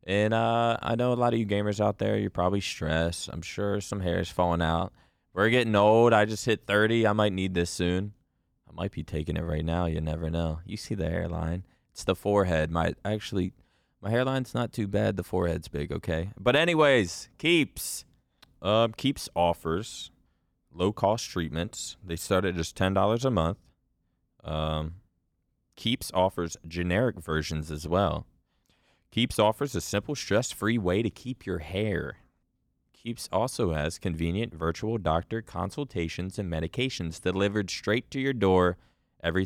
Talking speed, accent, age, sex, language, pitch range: 165 wpm, American, 20-39, male, English, 85-105 Hz